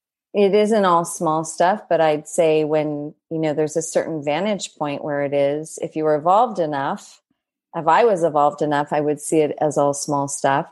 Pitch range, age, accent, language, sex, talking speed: 155-180 Hz, 40-59, American, English, female, 205 wpm